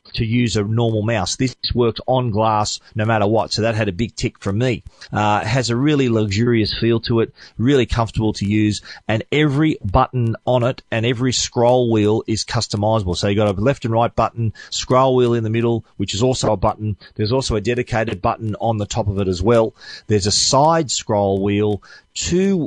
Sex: male